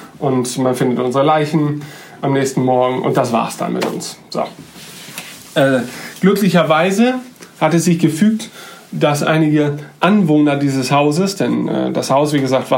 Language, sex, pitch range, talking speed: German, male, 150-180 Hz, 155 wpm